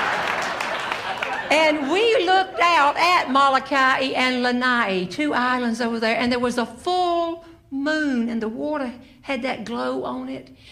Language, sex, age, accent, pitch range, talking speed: English, female, 60-79, American, 190-275 Hz, 145 wpm